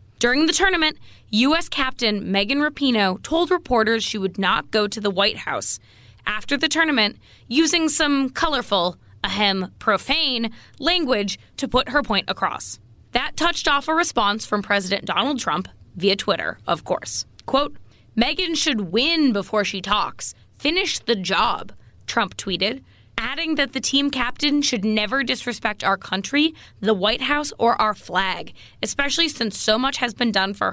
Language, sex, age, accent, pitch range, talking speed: English, female, 20-39, American, 200-295 Hz, 155 wpm